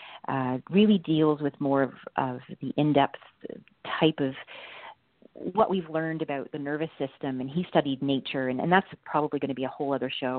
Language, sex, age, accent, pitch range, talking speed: English, female, 40-59, American, 135-160 Hz, 190 wpm